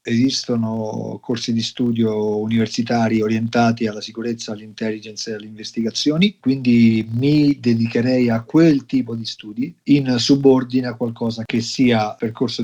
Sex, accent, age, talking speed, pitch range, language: male, native, 40-59, 130 wpm, 110-130 Hz, Italian